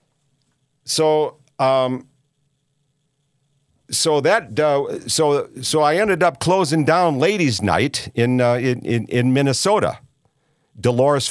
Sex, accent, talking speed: male, American, 110 wpm